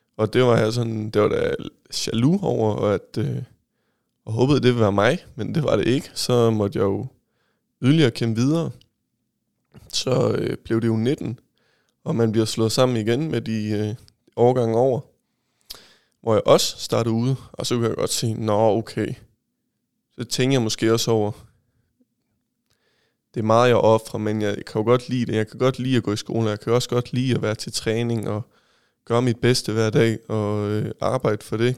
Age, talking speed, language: 20-39, 205 wpm, Danish